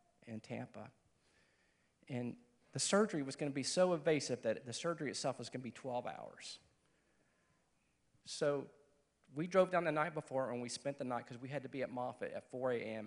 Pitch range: 130-180 Hz